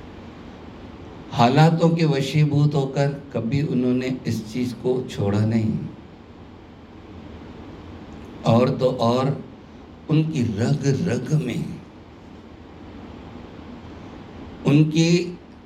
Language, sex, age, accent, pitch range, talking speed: Hindi, male, 50-69, native, 105-140 Hz, 75 wpm